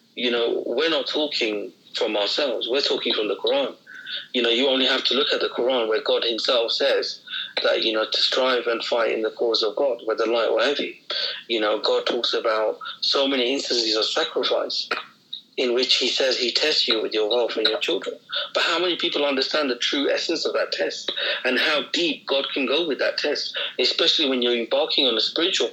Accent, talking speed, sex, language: British, 215 wpm, male, English